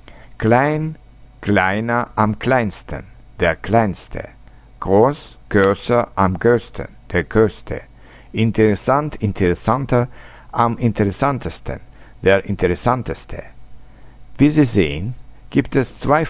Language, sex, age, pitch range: Japanese, male, 60-79, 100-125 Hz